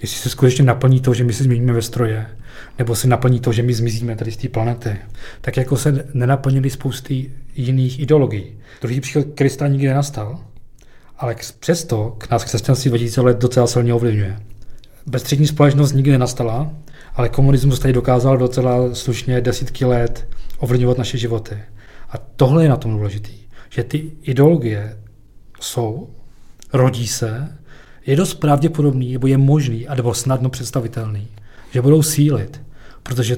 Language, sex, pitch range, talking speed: Czech, male, 120-140 Hz, 150 wpm